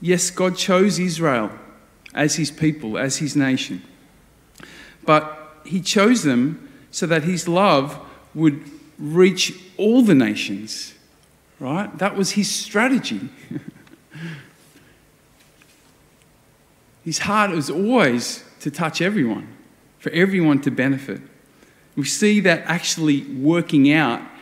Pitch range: 145-185 Hz